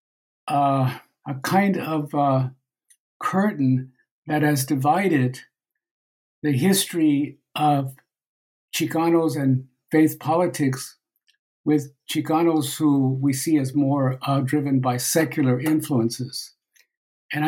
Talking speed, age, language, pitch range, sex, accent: 100 wpm, 60-79, English, 135-165 Hz, male, American